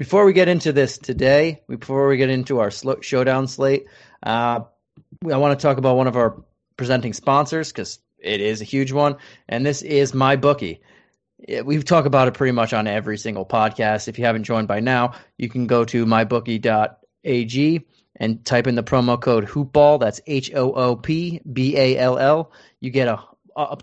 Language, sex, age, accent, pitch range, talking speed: English, male, 30-49, American, 115-140 Hz, 170 wpm